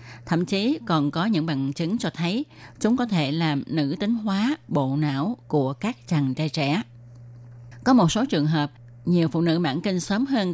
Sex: female